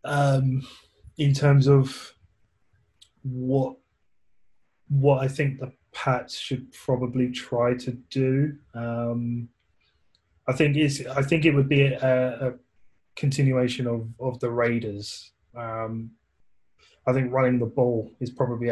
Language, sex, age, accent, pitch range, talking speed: English, male, 20-39, British, 115-130 Hz, 125 wpm